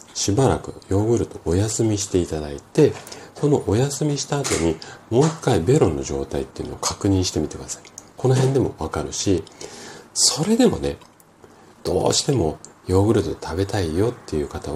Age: 40-59